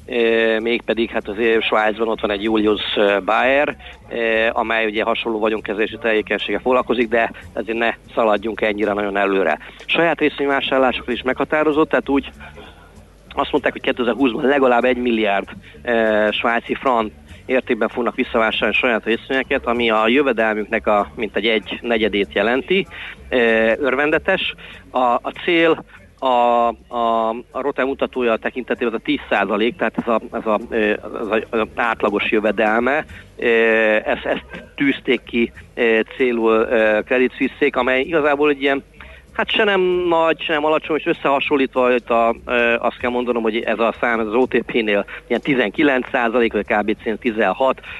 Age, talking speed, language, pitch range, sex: 40-59, 140 wpm, Hungarian, 110-130 Hz, male